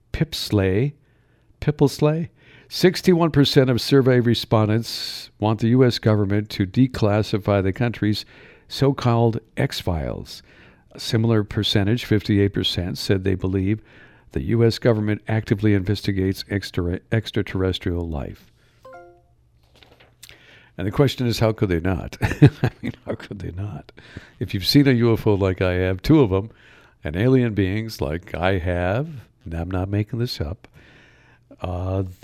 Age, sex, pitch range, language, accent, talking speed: 60-79, male, 95-120 Hz, English, American, 125 wpm